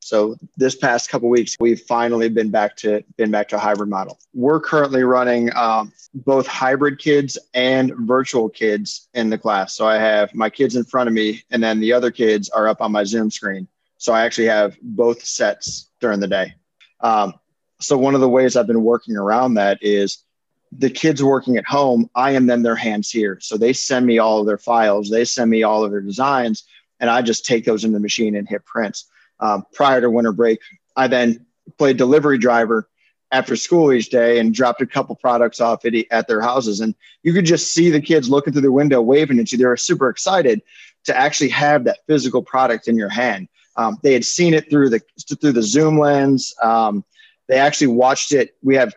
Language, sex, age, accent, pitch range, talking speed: English, male, 30-49, American, 110-135 Hz, 215 wpm